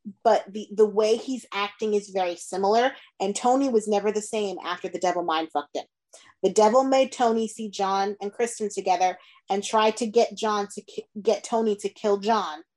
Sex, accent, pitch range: female, American, 190-225 Hz